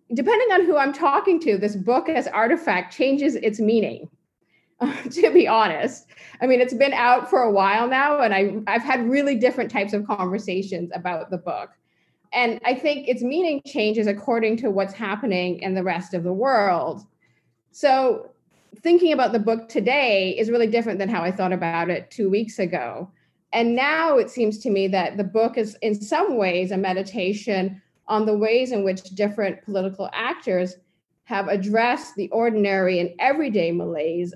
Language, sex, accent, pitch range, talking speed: English, female, American, 190-245 Hz, 175 wpm